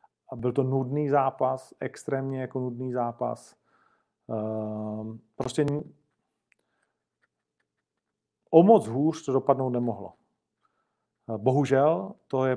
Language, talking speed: Czech, 90 wpm